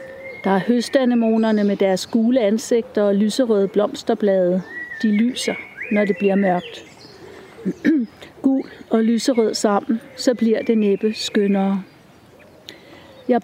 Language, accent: Danish, native